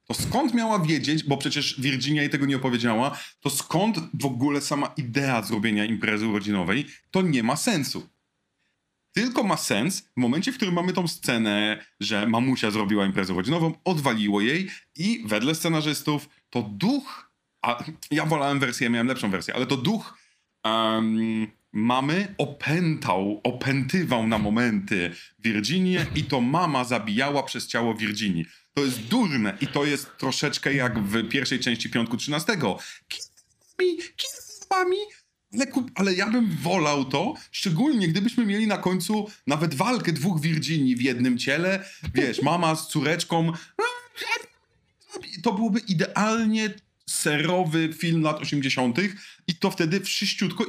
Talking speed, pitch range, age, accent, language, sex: 135 wpm, 125-195 Hz, 30-49, native, Polish, male